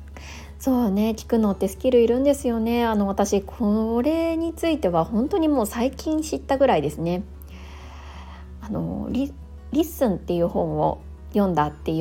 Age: 20-39